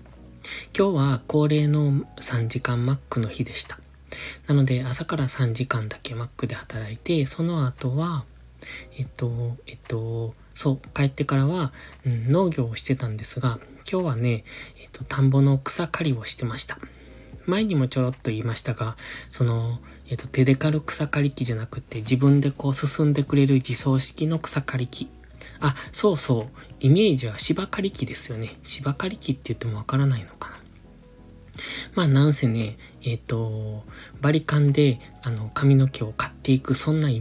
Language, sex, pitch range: Japanese, male, 115-140 Hz